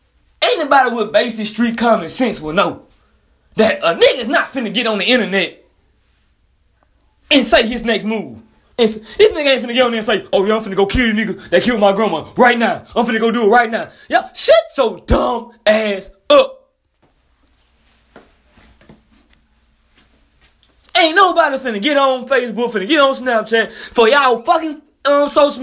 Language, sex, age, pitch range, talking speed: English, male, 20-39, 175-275 Hz, 170 wpm